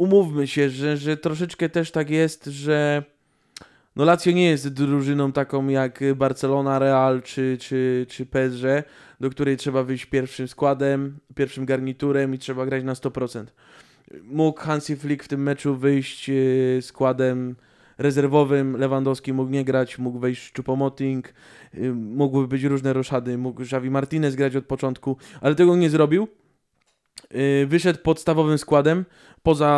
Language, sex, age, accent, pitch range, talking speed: Polish, male, 20-39, native, 130-160 Hz, 145 wpm